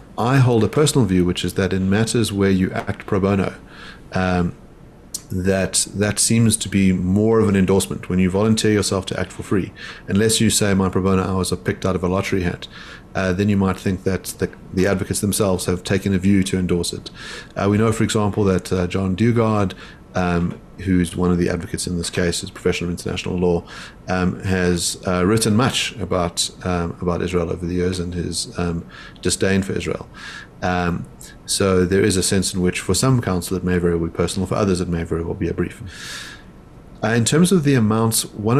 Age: 30-49